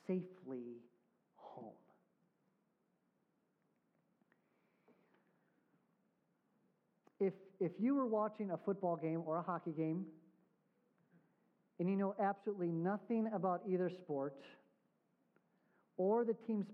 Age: 40-59